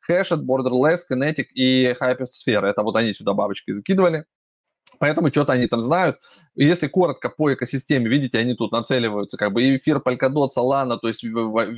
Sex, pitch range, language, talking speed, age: male, 115-140 Hz, Russian, 160 wpm, 20-39